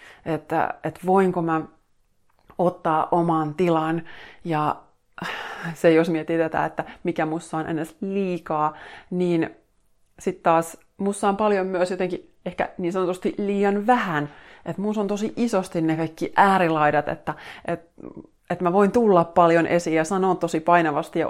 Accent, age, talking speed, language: native, 30-49, 145 wpm, Finnish